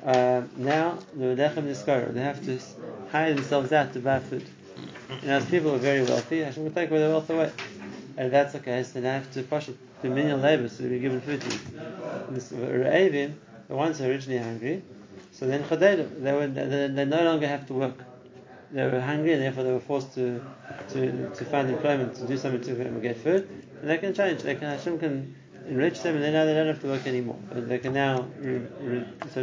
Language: English